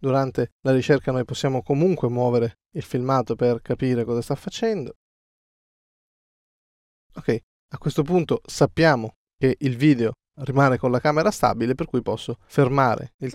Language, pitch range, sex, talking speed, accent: Italian, 125-150 Hz, male, 145 wpm, native